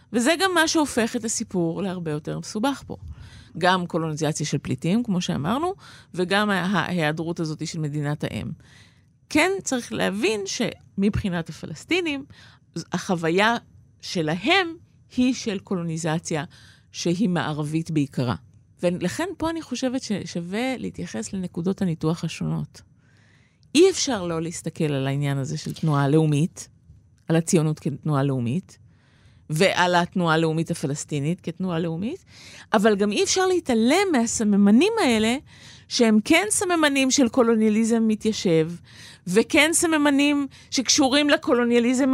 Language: Hebrew